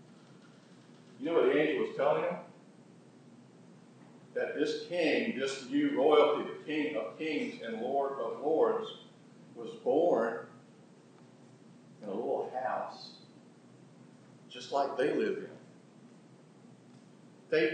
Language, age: English, 50-69